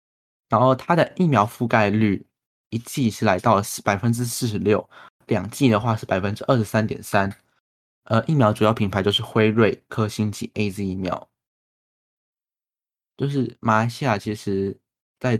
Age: 20-39